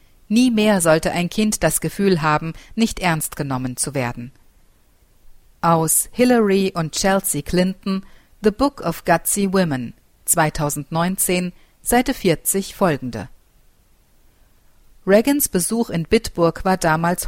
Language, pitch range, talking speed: German, 160-210 Hz, 115 wpm